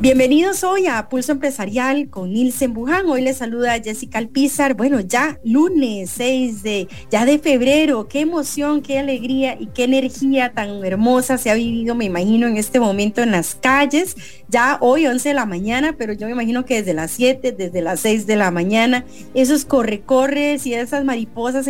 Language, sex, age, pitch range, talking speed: English, female, 30-49, 220-275 Hz, 185 wpm